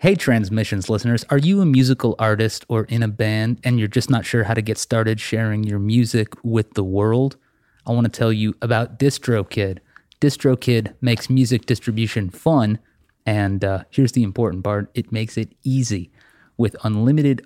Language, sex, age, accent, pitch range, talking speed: English, male, 30-49, American, 105-125 Hz, 175 wpm